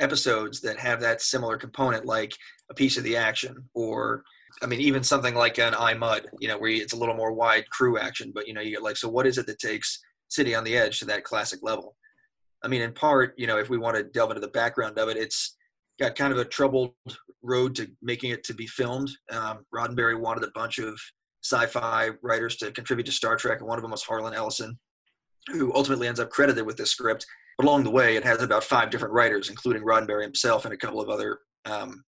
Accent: American